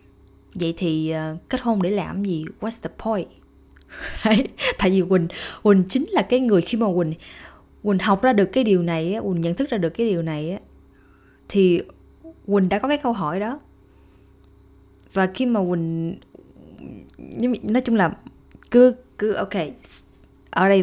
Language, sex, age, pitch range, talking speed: Vietnamese, female, 20-39, 155-225 Hz, 165 wpm